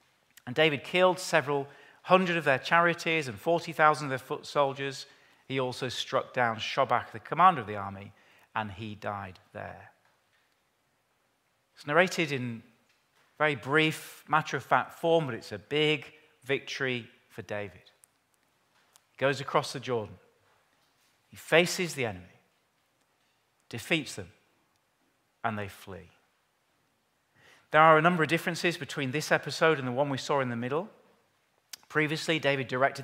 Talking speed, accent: 140 wpm, British